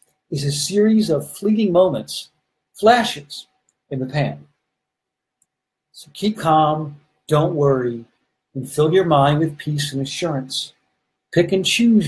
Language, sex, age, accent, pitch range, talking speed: English, male, 50-69, American, 140-175 Hz, 130 wpm